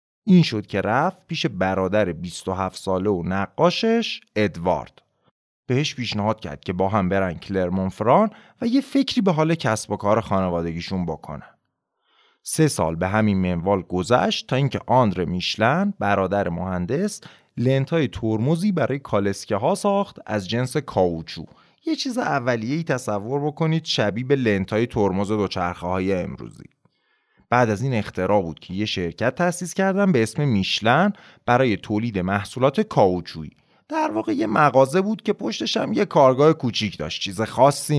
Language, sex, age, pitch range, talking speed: Persian, male, 30-49, 95-150 Hz, 145 wpm